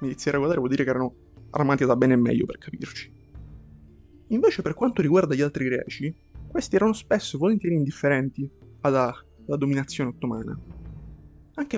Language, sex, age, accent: Italian, male, 20-39, native